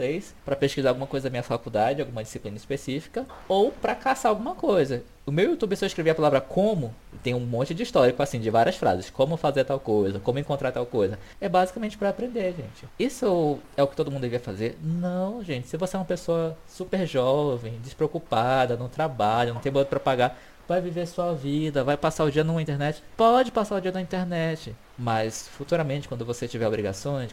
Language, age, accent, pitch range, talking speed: Portuguese, 20-39, Brazilian, 120-170 Hz, 205 wpm